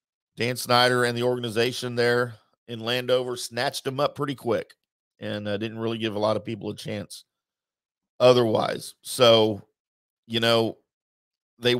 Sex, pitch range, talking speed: male, 105-125 Hz, 150 wpm